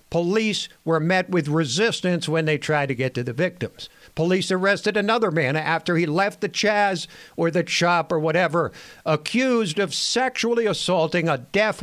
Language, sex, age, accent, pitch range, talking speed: English, male, 60-79, American, 150-200 Hz, 165 wpm